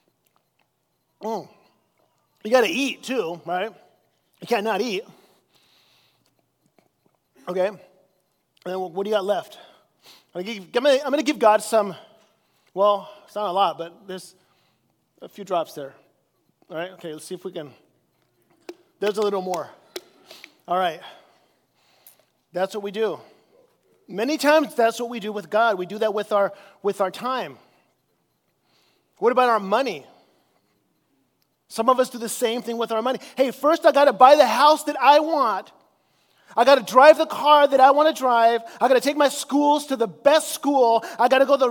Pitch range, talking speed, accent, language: 205-280 Hz, 170 wpm, American, English